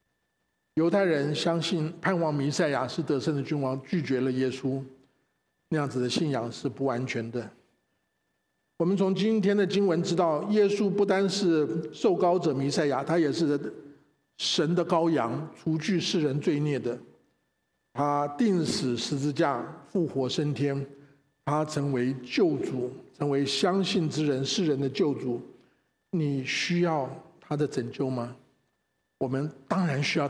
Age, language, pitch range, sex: 50-69, Chinese, 135-170 Hz, male